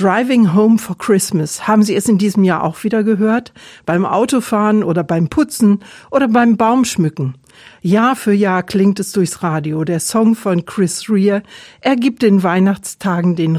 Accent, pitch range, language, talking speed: German, 180-220 Hz, German, 165 wpm